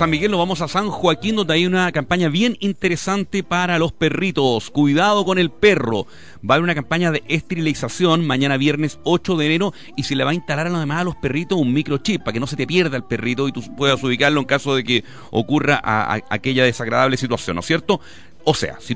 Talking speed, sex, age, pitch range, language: 220 wpm, male, 40-59, 115-165 Hz, Spanish